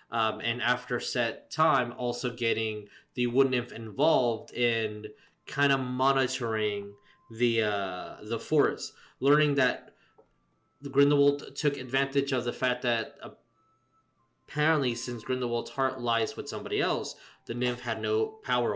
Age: 20-39